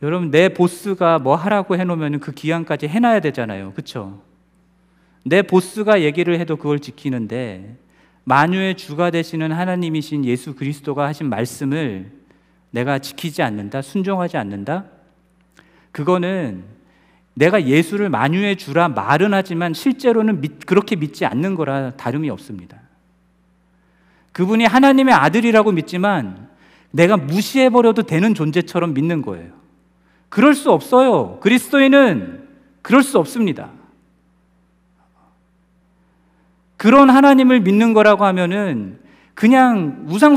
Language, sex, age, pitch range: Korean, male, 40-59, 140-210 Hz